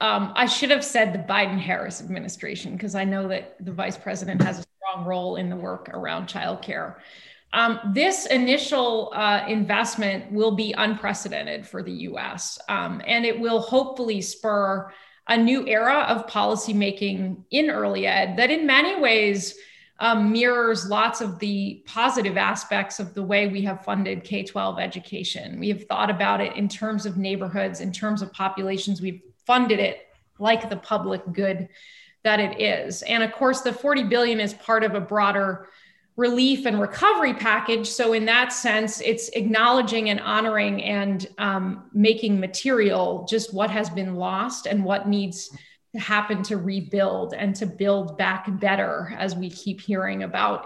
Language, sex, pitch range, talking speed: English, female, 195-235 Hz, 170 wpm